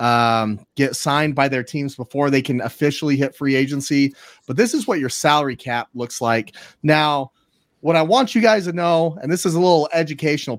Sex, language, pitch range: male, English, 120-150 Hz